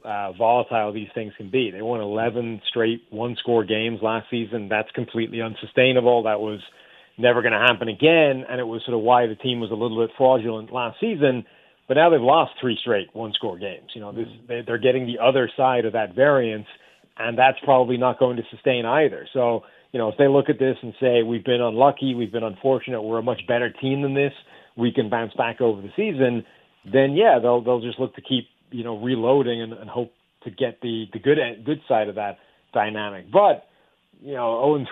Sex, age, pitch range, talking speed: male, 30-49, 110-130 Hz, 215 wpm